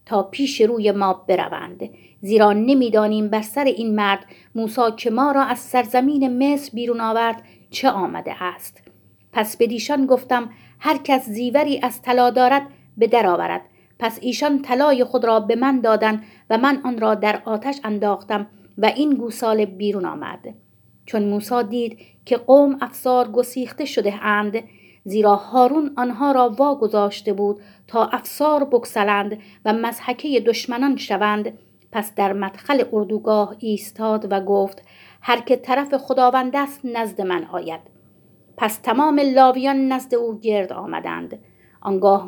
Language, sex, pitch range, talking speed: Persian, female, 210-255 Hz, 140 wpm